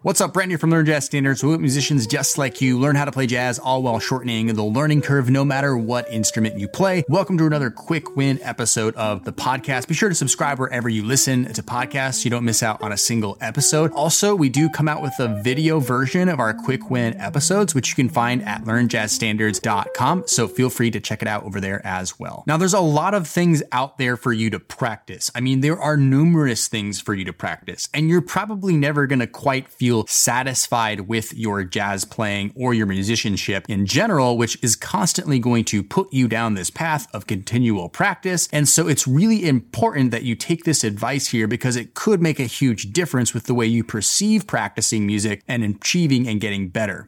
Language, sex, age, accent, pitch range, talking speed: English, male, 30-49, American, 115-150 Hz, 215 wpm